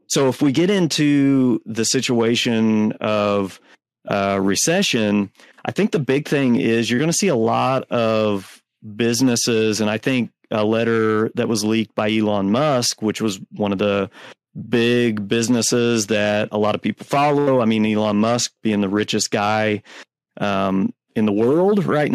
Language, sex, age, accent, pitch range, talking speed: English, male, 30-49, American, 110-130 Hz, 165 wpm